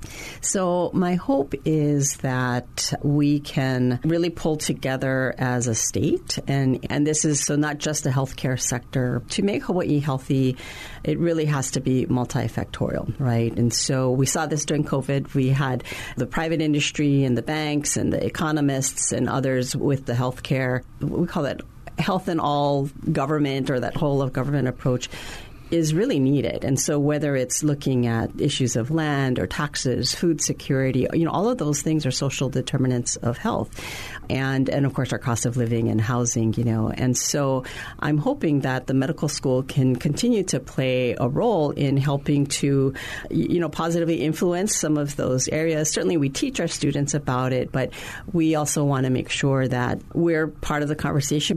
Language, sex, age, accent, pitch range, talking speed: English, female, 40-59, American, 125-155 Hz, 180 wpm